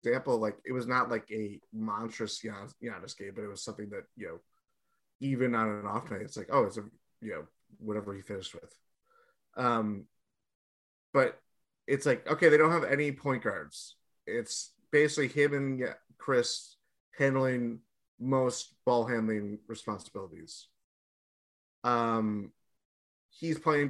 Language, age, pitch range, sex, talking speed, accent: English, 20-39, 110-130 Hz, male, 145 wpm, American